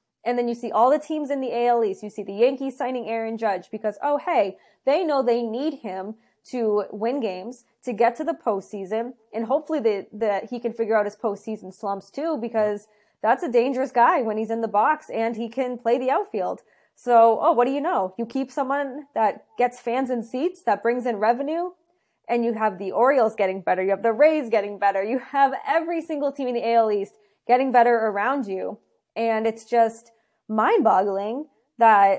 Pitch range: 220-270 Hz